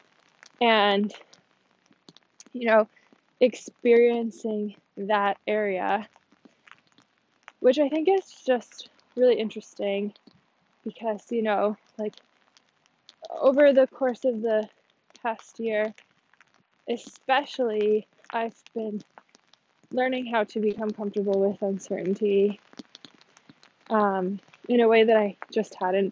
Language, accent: English, American